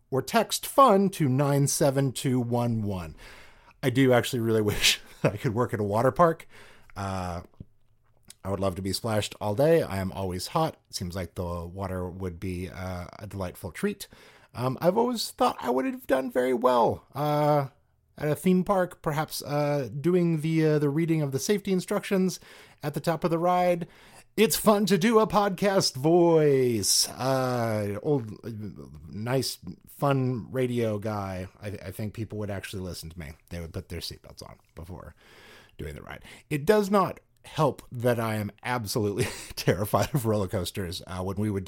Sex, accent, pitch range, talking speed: male, American, 100-150 Hz, 175 wpm